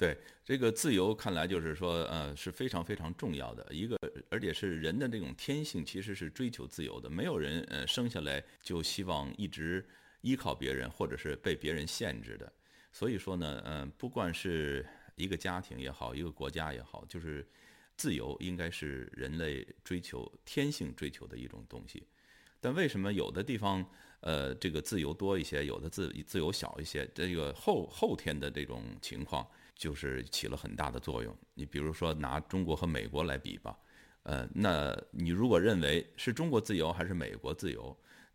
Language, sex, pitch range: Chinese, male, 75-95 Hz